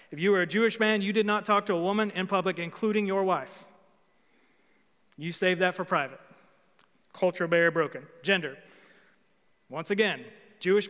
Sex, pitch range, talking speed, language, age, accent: male, 160-195 Hz, 165 wpm, English, 30-49, American